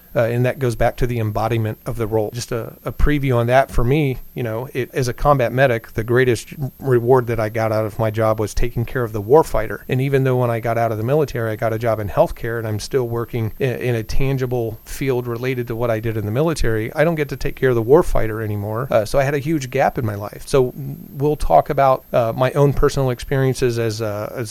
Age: 40-59